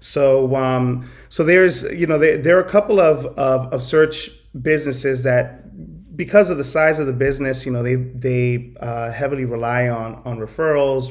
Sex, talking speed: male, 185 wpm